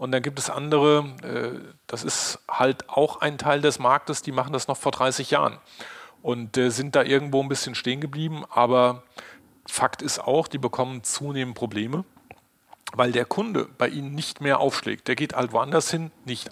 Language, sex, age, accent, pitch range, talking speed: German, male, 40-59, German, 120-145 Hz, 180 wpm